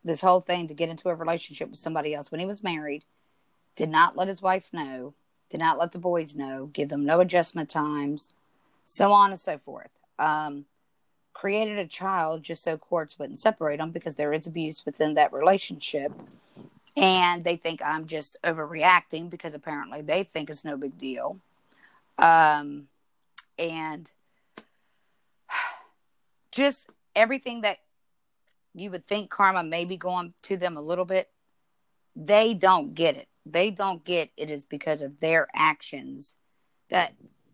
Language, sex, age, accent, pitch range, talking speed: English, female, 50-69, American, 150-185 Hz, 160 wpm